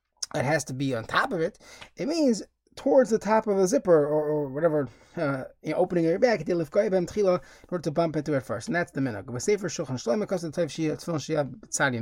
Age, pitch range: 20-39, 145-185 Hz